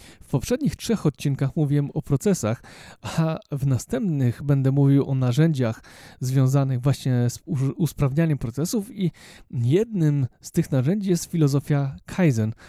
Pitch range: 130-160 Hz